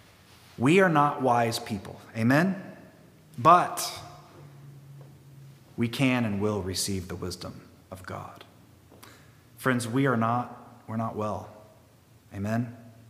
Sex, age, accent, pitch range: male, 30-49, American, 105-125 Hz